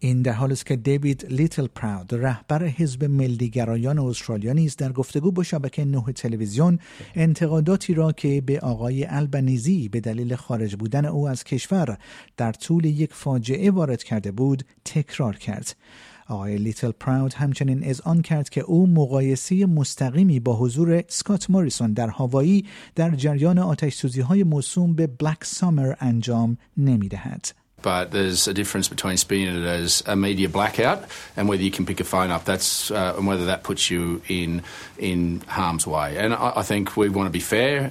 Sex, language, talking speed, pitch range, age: male, Persian, 165 wpm, 100-145 Hz, 50-69